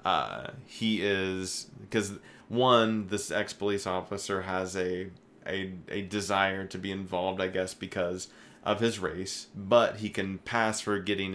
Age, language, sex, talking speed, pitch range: 20-39, English, male, 150 wpm, 90-100 Hz